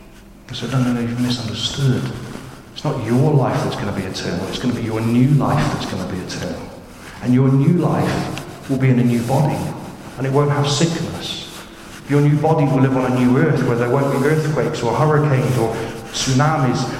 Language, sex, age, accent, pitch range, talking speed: English, male, 40-59, British, 120-145 Hz, 215 wpm